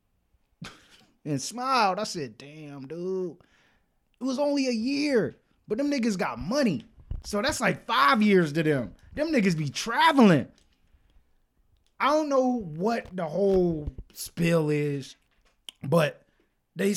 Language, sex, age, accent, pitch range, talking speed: English, male, 20-39, American, 140-215 Hz, 130 wpm